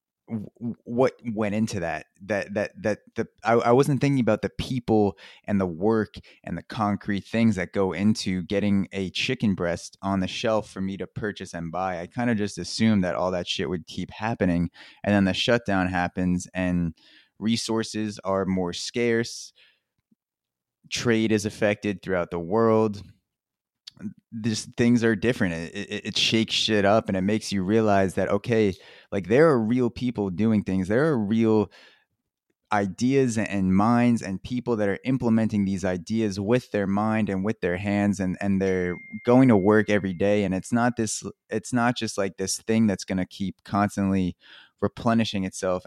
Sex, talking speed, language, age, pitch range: male, 175 wpm, English, 20-39, 95-110 Hz